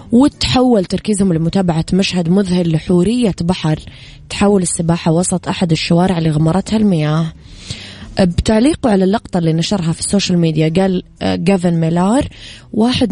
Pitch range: 165-195 Hz